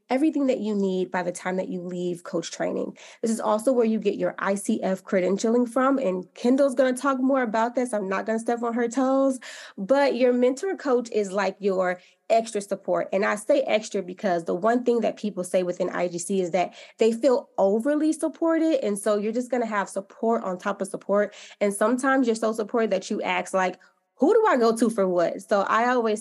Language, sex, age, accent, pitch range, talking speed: English, female, 20-39, American, 185-245 Hz, 220 wpm